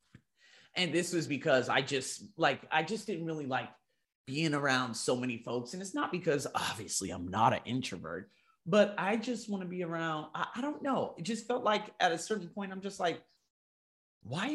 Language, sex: English, male